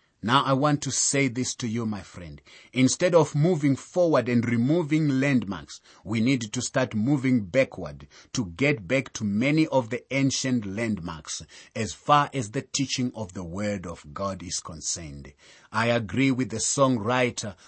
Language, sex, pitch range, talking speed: English, male, 100-145 Hz, 165 wpm